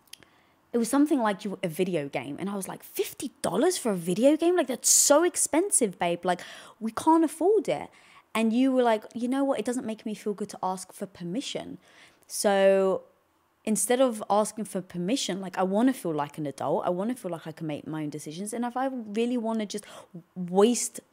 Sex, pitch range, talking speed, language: female, 160-220 Hz, 215 wpm, English